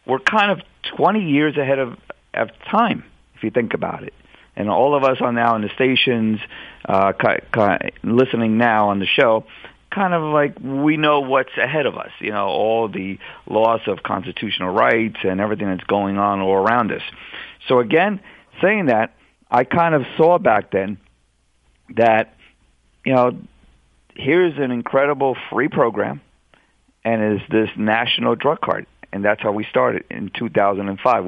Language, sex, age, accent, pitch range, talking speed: English, male, 50-69, American, 100-130 Hz, 160 wpm